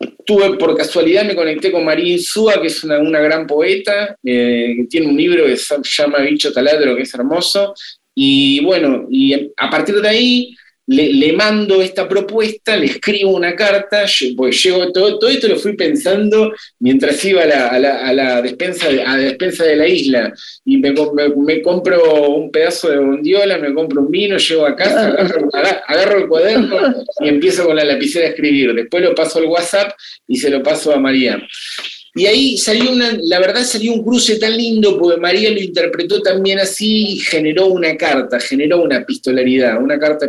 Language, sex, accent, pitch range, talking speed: Spanish, male, Argentinian, 150-215 Hz, 195 wpm